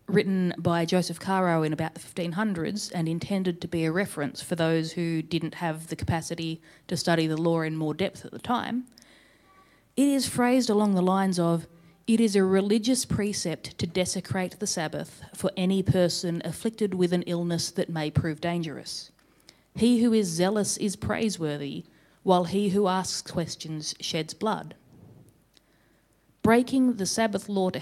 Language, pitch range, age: English, 165-200 Hz, 30-49